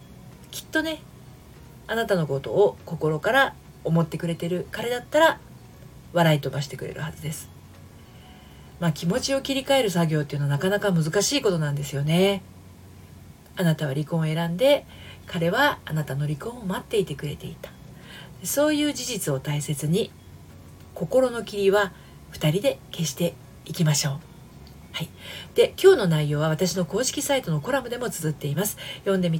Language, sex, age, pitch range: Japanese, female, 40-59, 150-220 Hz